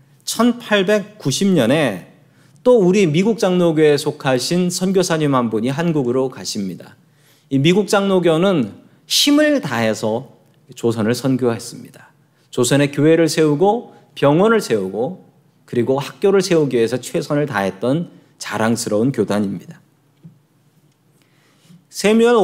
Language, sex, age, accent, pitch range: Korean, male, 40-59, native, 125-170 Hz